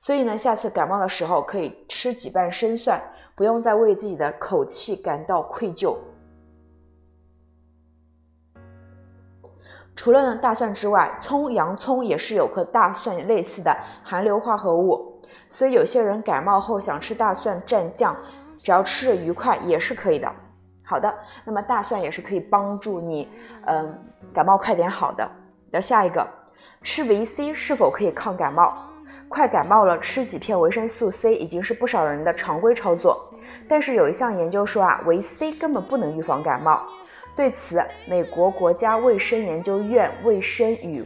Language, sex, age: Chinese, female, 20-39